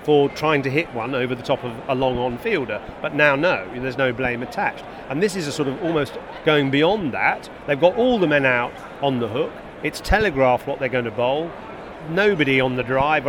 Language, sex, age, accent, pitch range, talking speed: English, male, 40-59, British, 130-155 Hz, 220 wpm